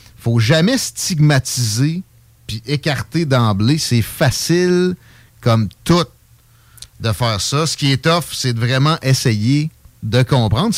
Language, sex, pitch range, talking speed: French, male, 115-150 Hz, 140 wpm